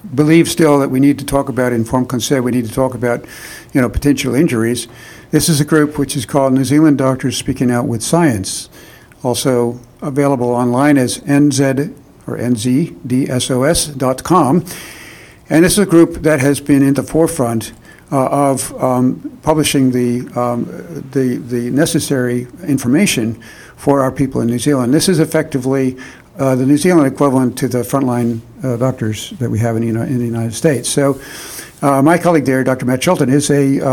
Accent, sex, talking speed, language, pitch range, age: American, male, 175 wpm, English, 125-150 Hz, 60-79